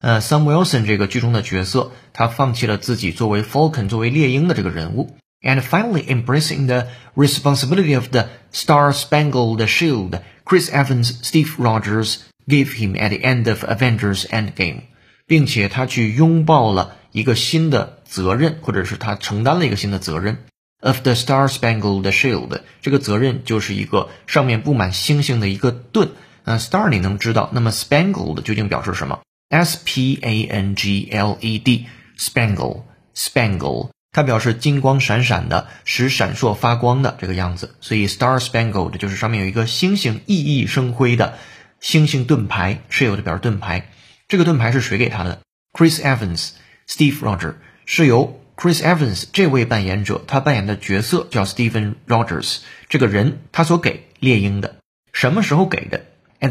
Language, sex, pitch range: Chinese, male, 105-140 Hz